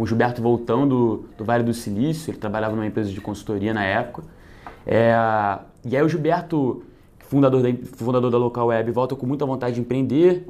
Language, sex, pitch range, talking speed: Portuguese, male, 115-145 Hz, 190 wpm